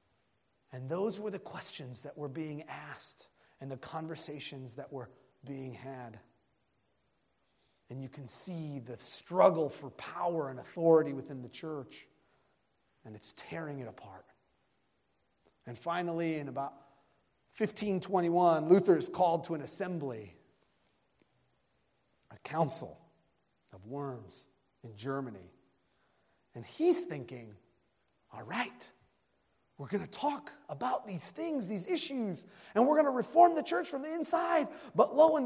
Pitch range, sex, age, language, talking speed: 130-200 Hz, male, 30-49, English, 130 wpm